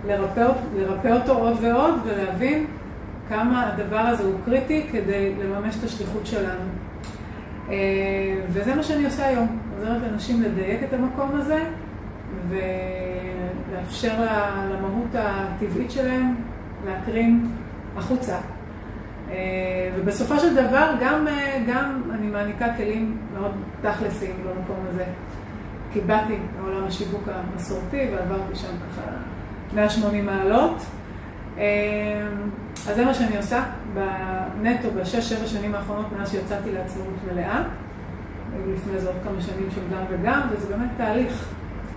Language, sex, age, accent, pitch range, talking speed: Hebrew, female, 30-49, Croatian, 185-235 Hz, 115 wpm